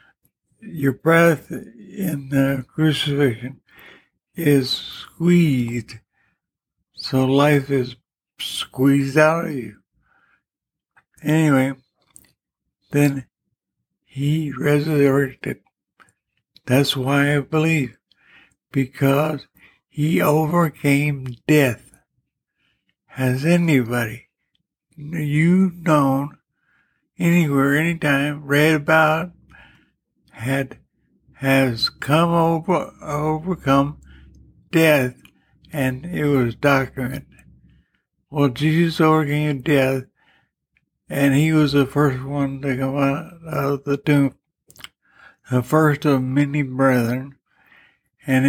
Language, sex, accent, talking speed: English, male, American, 80 wpm